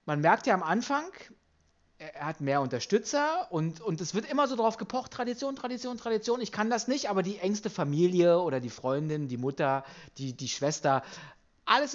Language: German